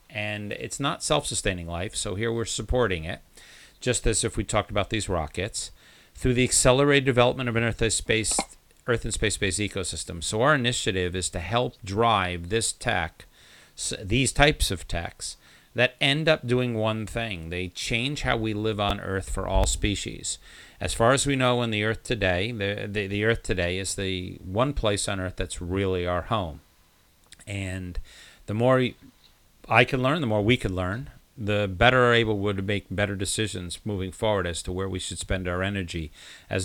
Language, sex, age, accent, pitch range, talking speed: English, male, 40-59, American, 95-115 Hz, 185 wpm